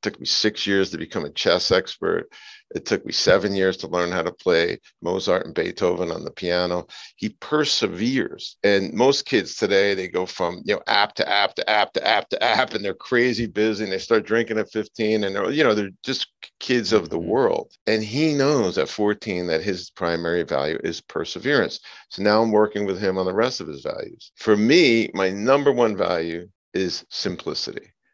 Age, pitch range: 50-69, 95-125 Hz